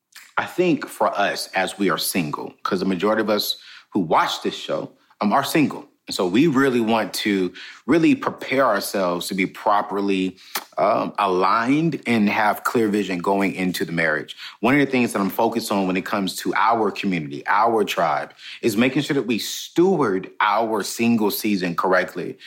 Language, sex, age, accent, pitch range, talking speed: English, male, 30-49, American, 100-125 Hz, 180 wpm